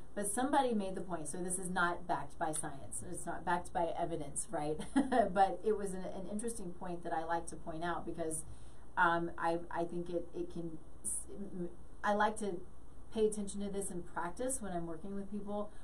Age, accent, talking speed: 30-49, American, 200 wpm